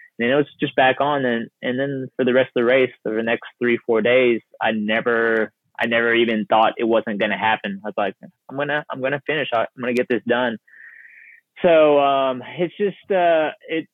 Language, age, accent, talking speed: English, 20-39, American, 205 wpm